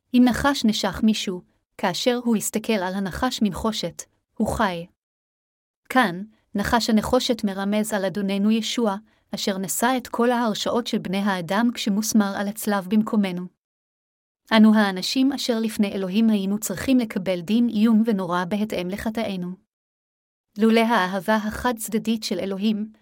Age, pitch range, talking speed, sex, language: 30-49, 195-225 Hz, 130 wpm, female, Hebrew